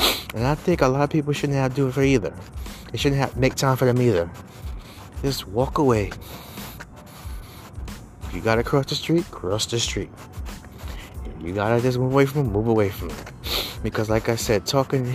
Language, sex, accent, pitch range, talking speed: English, male, American, 100-130 Hz, 200 wpm